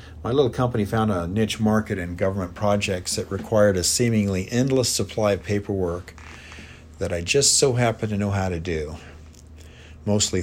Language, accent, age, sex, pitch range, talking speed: English, American, 50-69, male, 80-105 Hz, 165 wpm